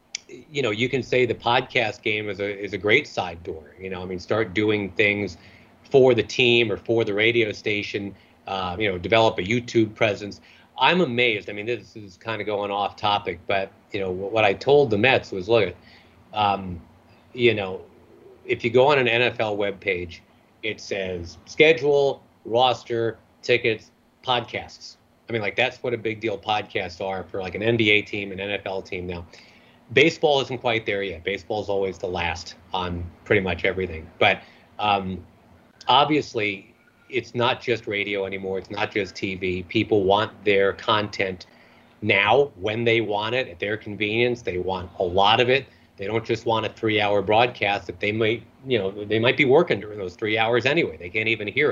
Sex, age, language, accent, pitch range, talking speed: male, 30-49, English, American, 95-115 Hz, 190 wpm